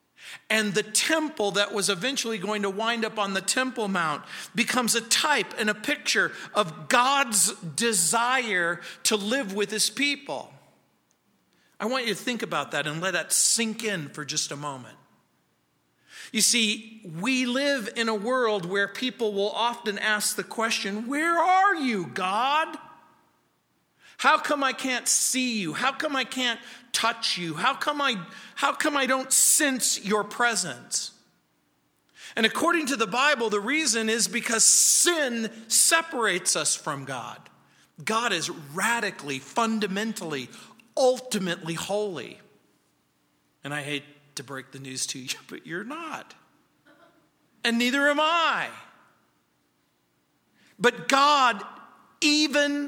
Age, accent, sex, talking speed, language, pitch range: 50-69, American, male, 140 wpm, English, 185-260 Hz